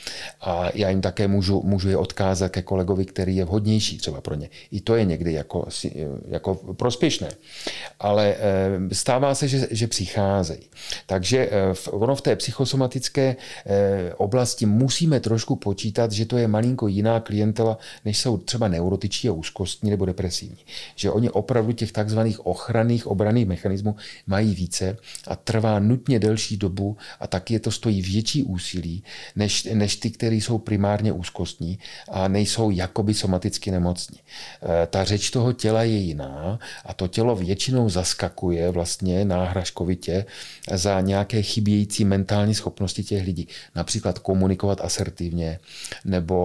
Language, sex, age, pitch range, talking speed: Czech, male, 40-59, 90-110 Hz, 140 wpm